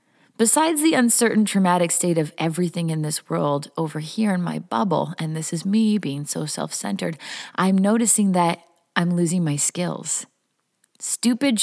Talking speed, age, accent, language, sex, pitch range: 155 wpm, 30-49, American, English, female, 160-230 Hz